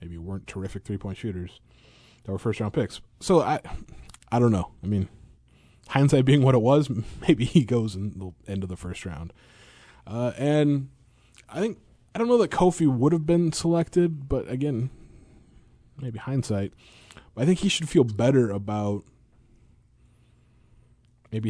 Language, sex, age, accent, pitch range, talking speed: English, male, 20-39, American, 100-125 Hz, 165 wpm